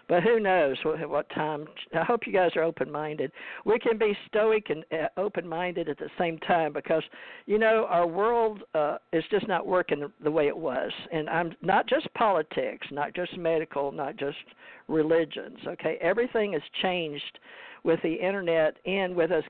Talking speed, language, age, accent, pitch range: 185 wpm, English, 50-69, American, 155-210 Hz